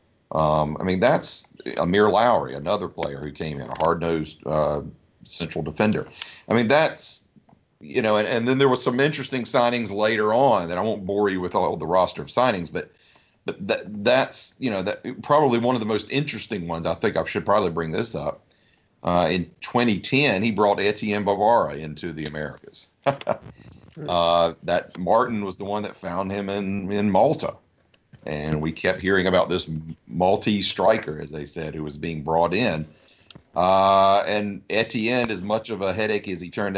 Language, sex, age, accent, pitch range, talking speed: English, male, 40-59, American, 85-110 Hz, 185 wpm